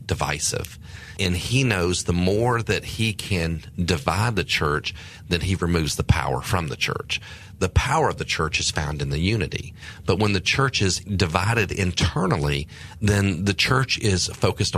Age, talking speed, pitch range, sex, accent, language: 40-59, 170 wpm, 85-110 Hz, male, American, English